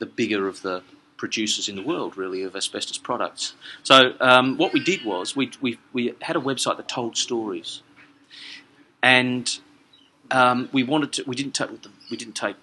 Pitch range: 110-140 Hz